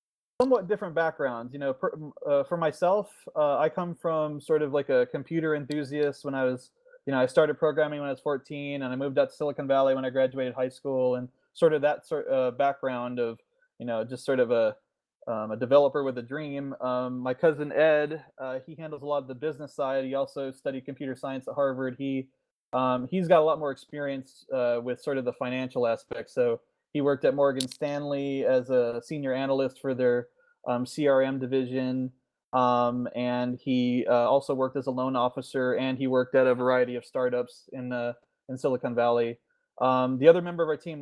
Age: 20-39